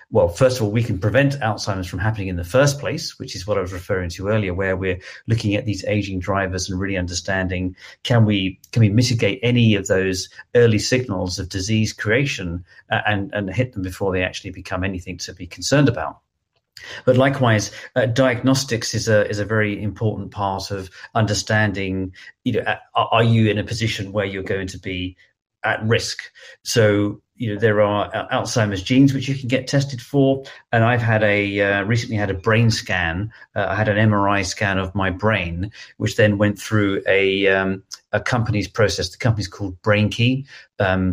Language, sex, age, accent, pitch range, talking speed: English, male, 40-59, British, 95-115 Hz, 190 wpm